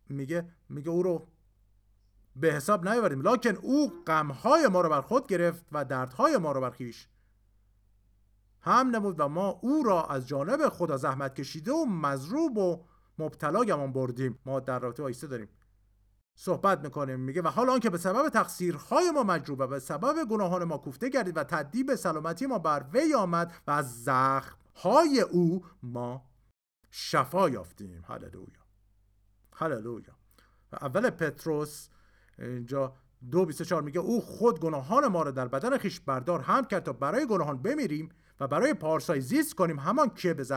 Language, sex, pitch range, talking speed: Persian, male, 125-180 Hz, 150 wpm